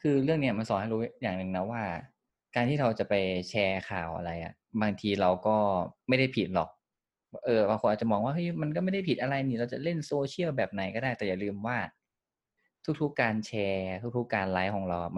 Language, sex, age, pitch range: Thai, male, 20-39, 95-120 Hz